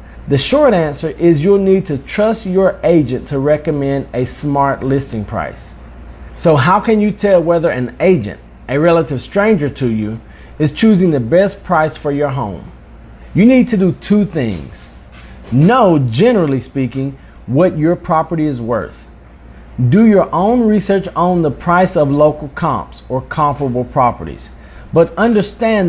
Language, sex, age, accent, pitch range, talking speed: English, male, 40-59, American, 125-180 Hz, 155 wpm